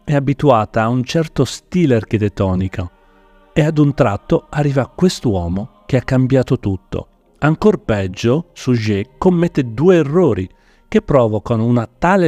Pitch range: 105-150 Hz